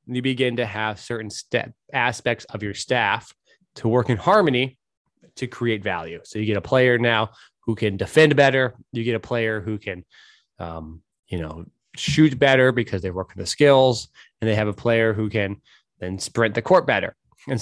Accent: American